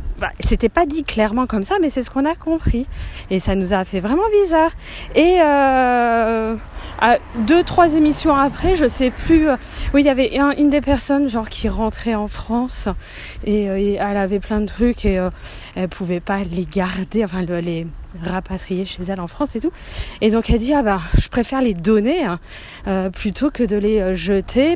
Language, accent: French, French